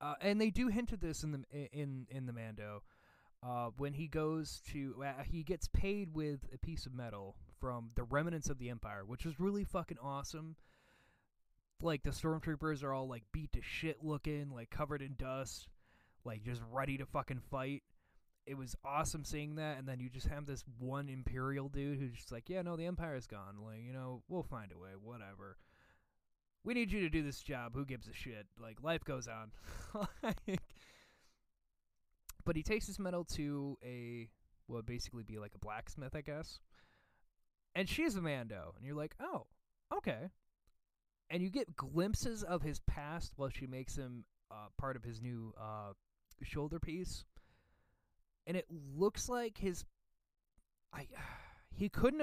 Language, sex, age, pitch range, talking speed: English, male, 20-39, 110-155 Hz, 180 wpm